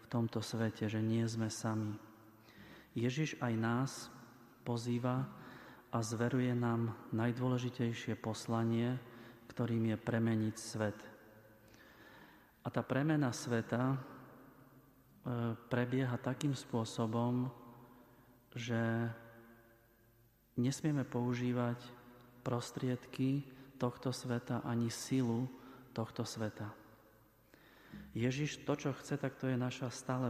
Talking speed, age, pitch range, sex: 90 wpm, 30-49, 110-125 Hz, male